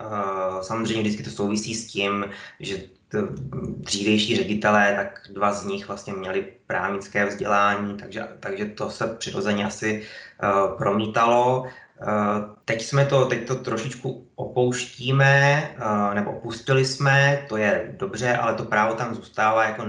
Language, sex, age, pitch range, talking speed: Czech, male, 20-39, 105-125 Hz, 140 wpm